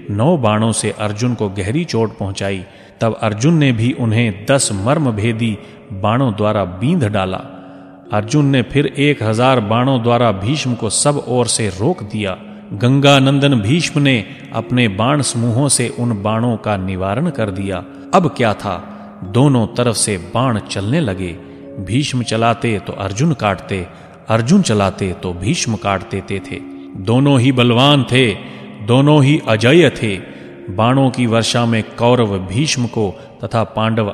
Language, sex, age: Hindi, male, 30-49